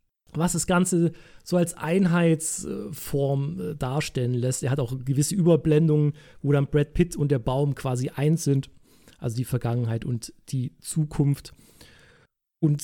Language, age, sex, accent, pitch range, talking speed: German, 40-59, male, German, 125-160 Hz, 140 wpm